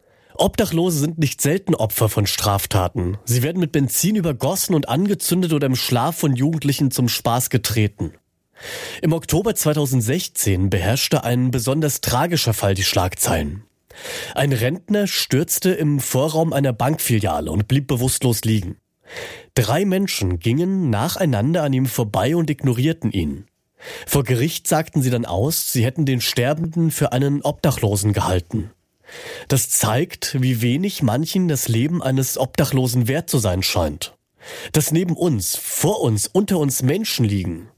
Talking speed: 140 wpm